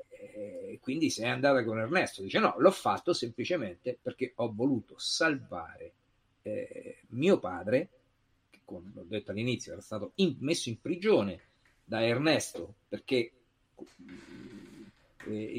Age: 50-69